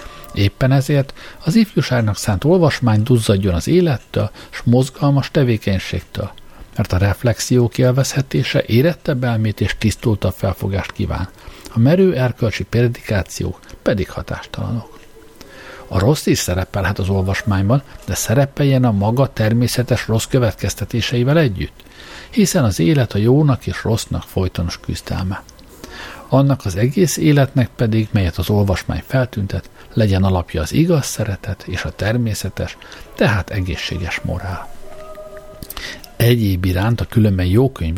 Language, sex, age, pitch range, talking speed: Hungarian, male, 60-79, 100-135 Hz, 120 wpm